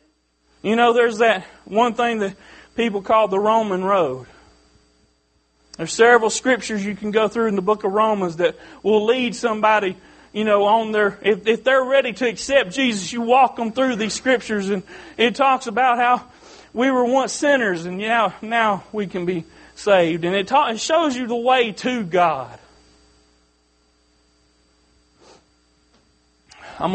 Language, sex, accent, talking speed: English, male, American, 165 wpm